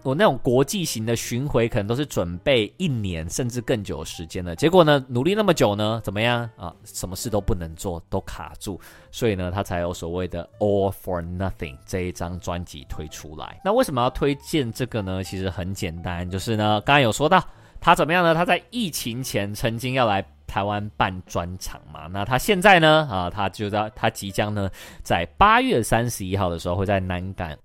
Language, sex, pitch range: Chinese, male, 90-125 Hz